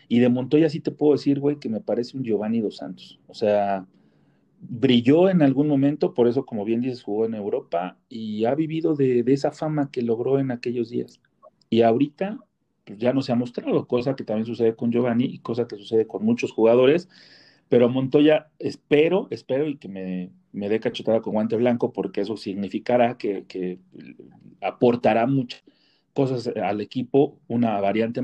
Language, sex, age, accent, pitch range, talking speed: Spanish, male, 40-59, Mexican, 115-150 Hz, 185 wpm